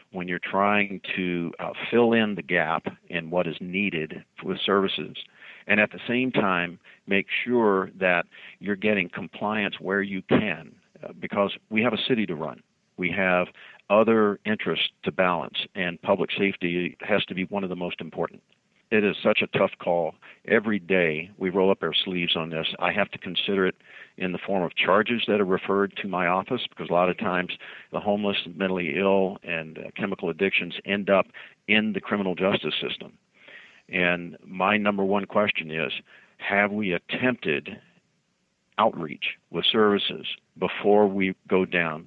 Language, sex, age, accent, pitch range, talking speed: English, male, 50-69, American, 90-100 Hz, 170 wpm